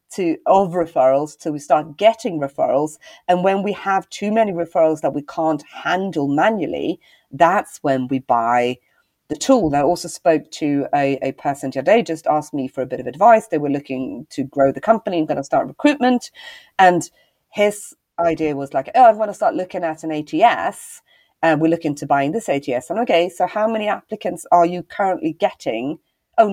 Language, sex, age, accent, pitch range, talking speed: English, female, 40-59, British, 155-210 Hz, 190 wpm